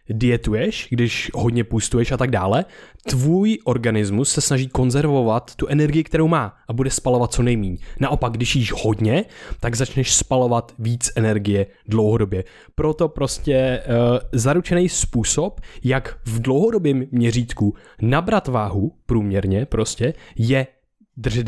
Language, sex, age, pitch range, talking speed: Czech, male, 20-39, 110-135 Hz, 130 wpm